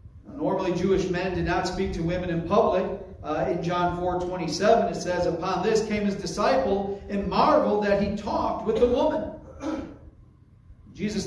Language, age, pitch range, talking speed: English, 40-59, 160-210 Hz, 165 wpm